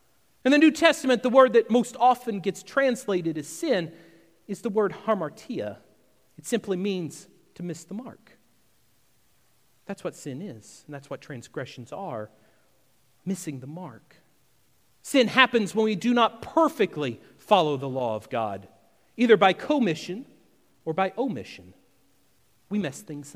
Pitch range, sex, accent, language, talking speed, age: 150-235 Hz, male, American, English, 145 wpm, 40-59